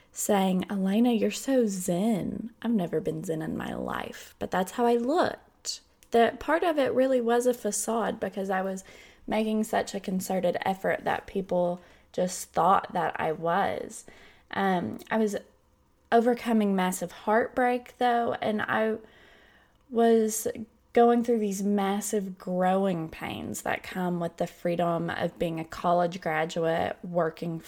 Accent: American